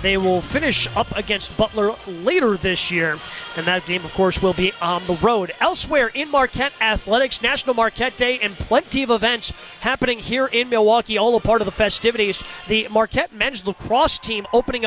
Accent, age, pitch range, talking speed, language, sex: American, 30-49, 205-245 Hz, 185 wpm, English, male